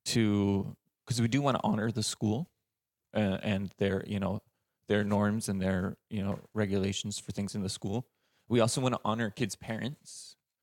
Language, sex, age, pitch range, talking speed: English, male, 20-39, 105-130 Hz, 185 wpm